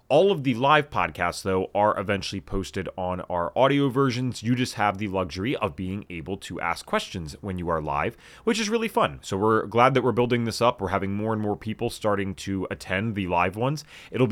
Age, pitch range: 30-49, 100-140 Hz